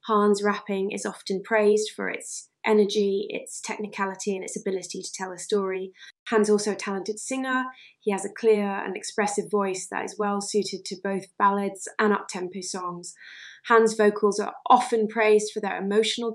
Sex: female